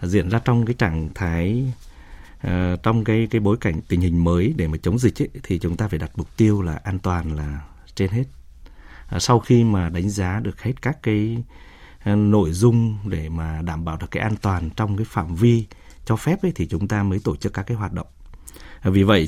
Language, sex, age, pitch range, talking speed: Vietnamese, male, 20-39, 85-115 Hz, 220 wpm